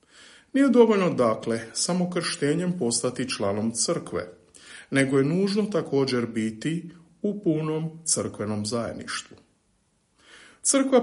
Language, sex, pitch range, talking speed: Croatian, male, 120-185 Hz, 90 wpm